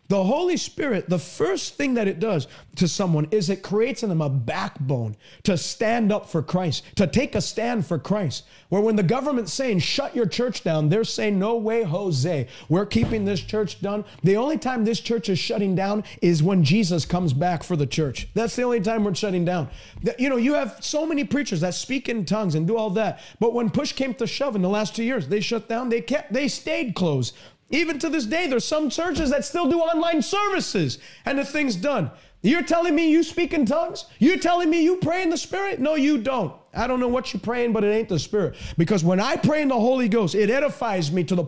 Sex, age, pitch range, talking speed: male, 30-49, 185-280 Hz, 235 wpm